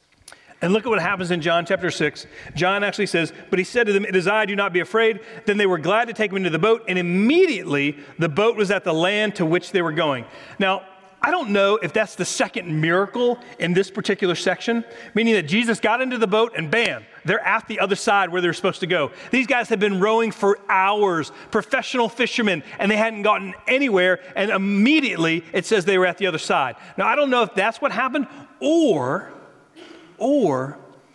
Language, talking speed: English, 220 wpm